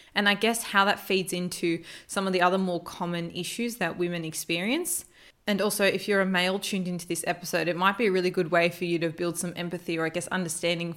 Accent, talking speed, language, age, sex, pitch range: Australian, 240 wpm, English, 20-39, female, 170-200 Hz